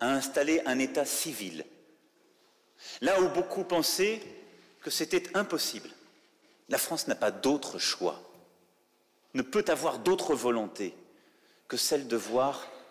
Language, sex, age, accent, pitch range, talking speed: French, male, 30-49, French, 155-215 Hz, 125 wpm